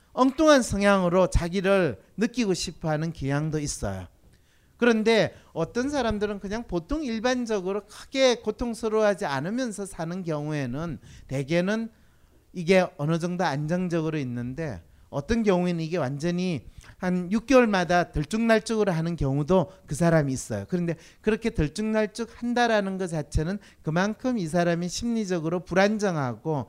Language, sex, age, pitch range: Korean, male, 40-59, 160-225 Hz